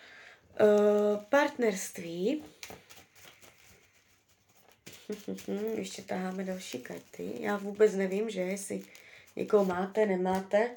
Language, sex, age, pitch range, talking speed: Czech, female, 20-39, 200-255 Hz, 100 wpm